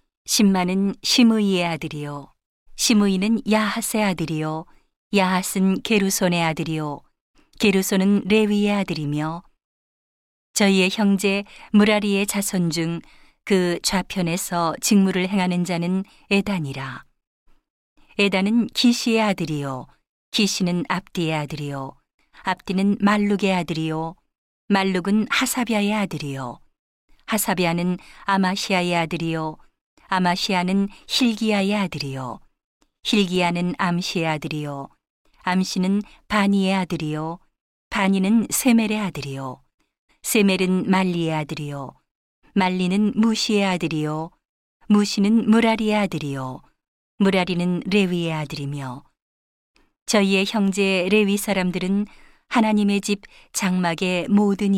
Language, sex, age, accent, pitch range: Korean, female, 40-59, native, 165-205 Hz